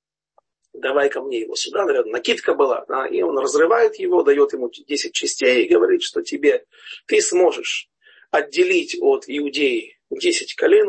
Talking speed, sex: 150 wpm, male